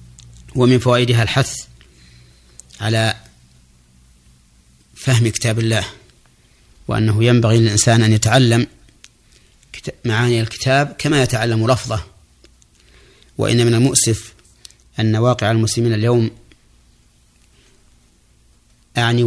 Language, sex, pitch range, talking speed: Arabic, male, 95-120 Hz, 80 wpm